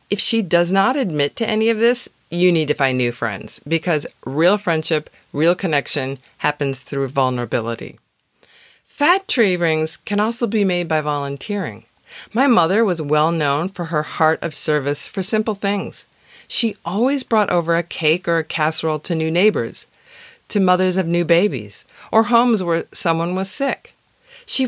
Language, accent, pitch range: English, American, 150-210 Hz